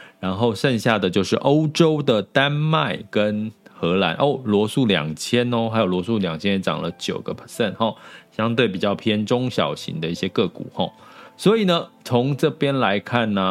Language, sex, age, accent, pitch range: Chinese, male, 20-39, native, 100-140 Hz